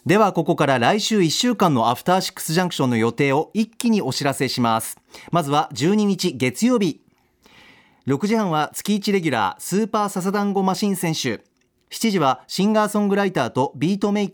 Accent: native